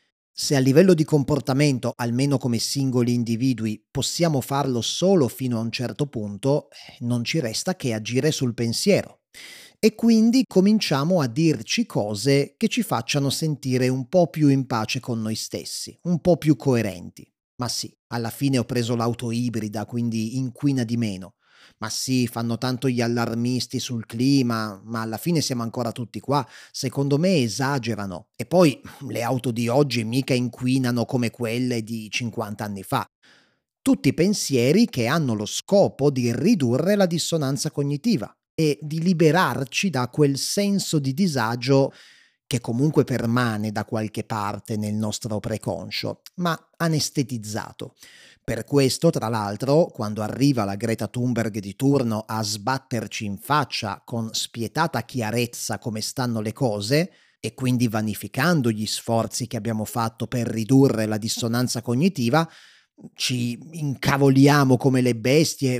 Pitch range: 115-145 Hz